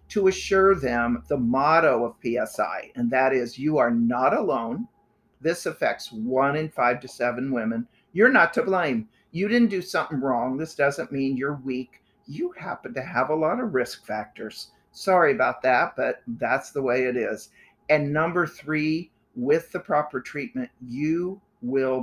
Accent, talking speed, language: American, 170 wpm, English